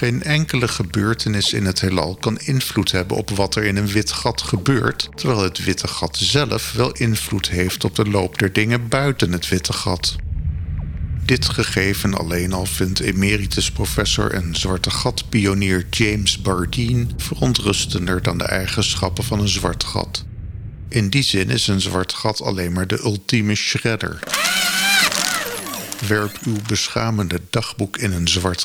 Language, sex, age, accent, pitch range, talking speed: Dutch, male, 50-69, Dutch, 90-115 Hz, 155 wpm